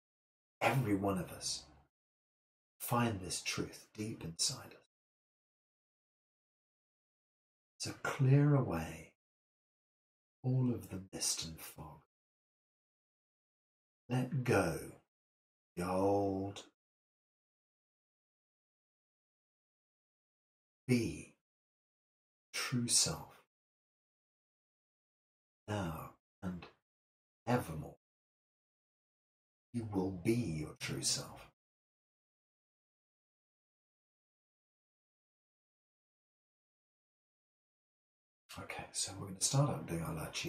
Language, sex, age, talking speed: English, male, 60-79, 65 wpm